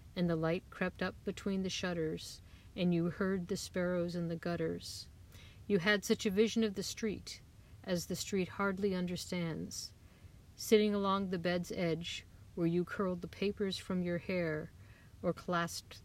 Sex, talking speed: female, 165 wpm